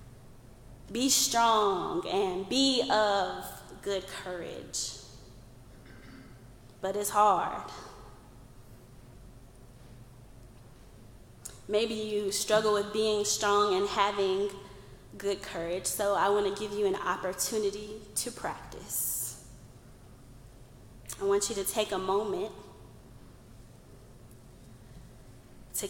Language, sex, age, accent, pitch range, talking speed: English, female, 20-39, American, 125-210 Hz, 90 wpm